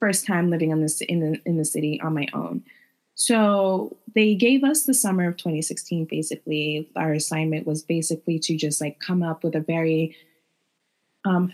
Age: 20-39